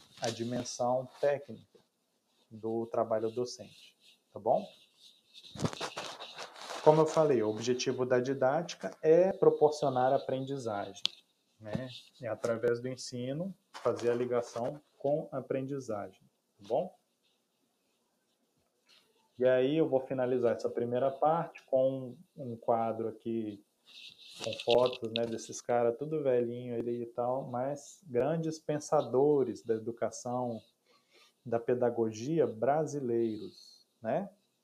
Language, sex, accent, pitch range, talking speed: Portuguese, male, Brazilian, 115-135 Hz, 105 wpm